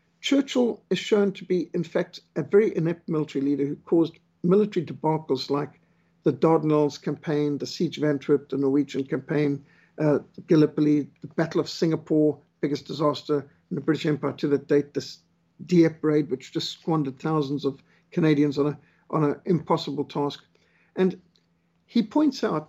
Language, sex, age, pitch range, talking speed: English, male, 60-79, 145-180 Hz, 160 wpm